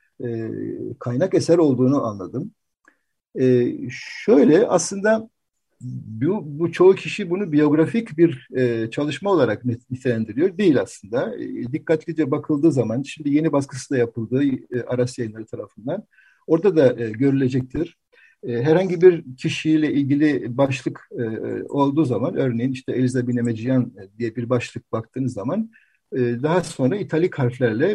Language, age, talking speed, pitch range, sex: Turkish, 60-79, 135 wpm, 120-160 Hz, male